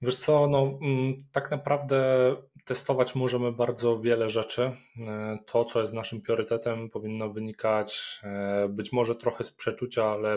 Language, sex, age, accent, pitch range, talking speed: Polish, male, 20-39, native, 105-125 Hz, 135 wpm